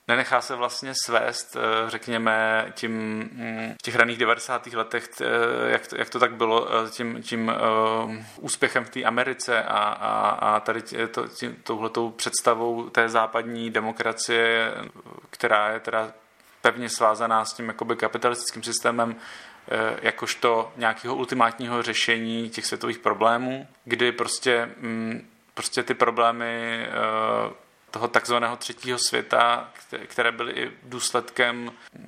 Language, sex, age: Czech, male, 30-49